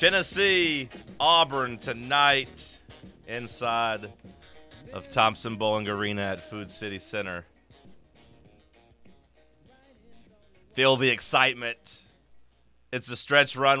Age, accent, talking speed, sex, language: 30-49, American, 80 wpm, male, English